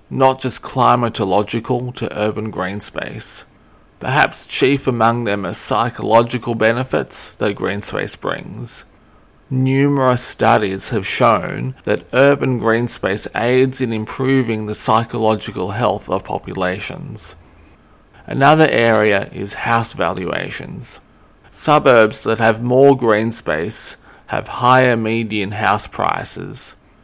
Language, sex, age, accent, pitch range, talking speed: English, male, 20-39, Australian, 105-125 Hz, 110 wpm